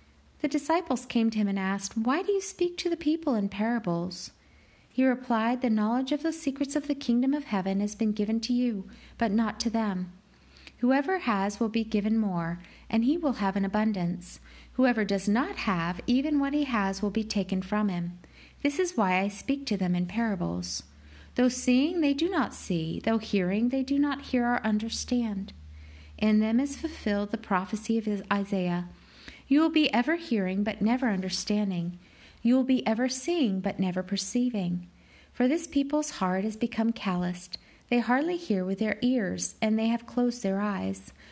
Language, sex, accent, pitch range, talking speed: English, female, American, 190-260 Hz, 185 wpm